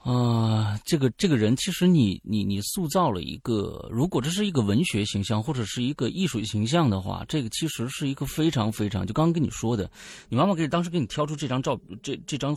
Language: Chinese